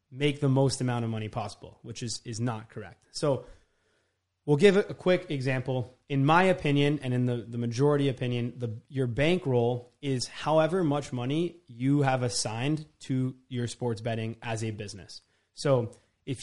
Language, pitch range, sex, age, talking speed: English, 120-145 Hz, male, 20-39, 170 wpm